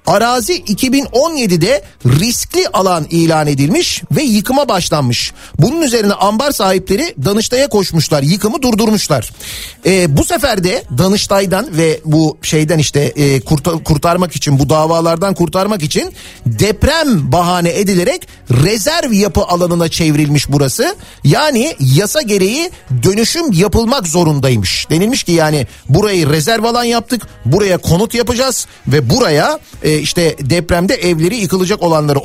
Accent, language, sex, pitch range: native, Turkish, male, 155-215 Hz